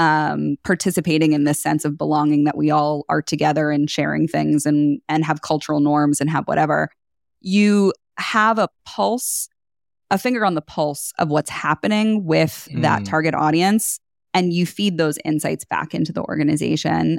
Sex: female